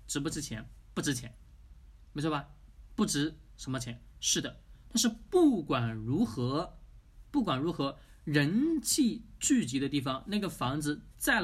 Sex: male